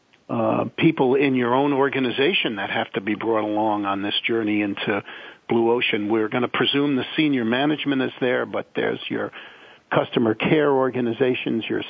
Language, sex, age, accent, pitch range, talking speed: English, male, 50-69, American, 115-130 Hz, 170 wpm